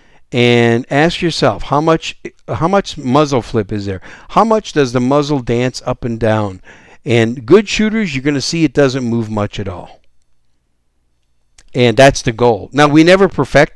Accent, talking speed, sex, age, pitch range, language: American, 180 wpm, male, 60-79, 105-145 Hz, English